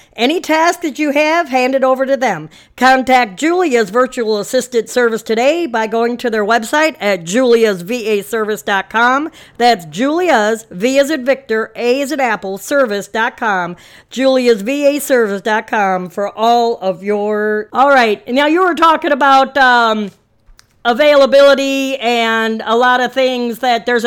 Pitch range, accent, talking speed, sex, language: 220-275 Hz, American, 135 wpm, female, English